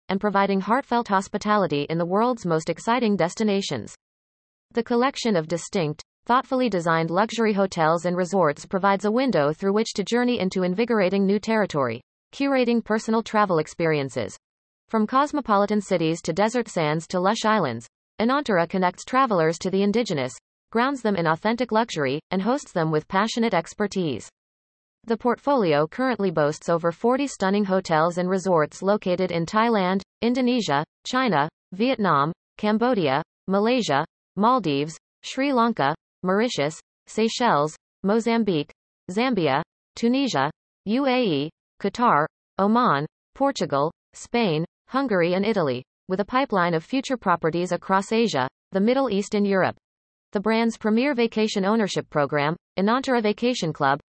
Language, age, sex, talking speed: English, 30-49, female, 130 wpm